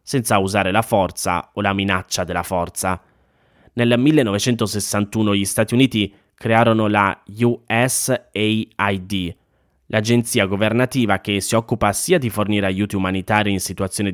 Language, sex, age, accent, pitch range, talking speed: Italian, male, 20-39, native, 95-115 Hz, 125 wpm